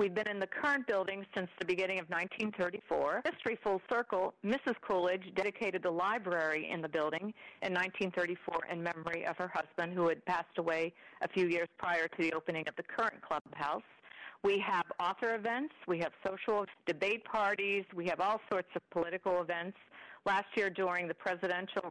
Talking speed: 180 wpm